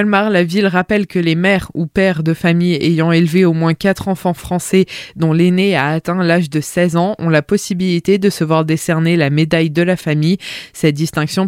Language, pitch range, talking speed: French, 165-190 Hz, 205 wpm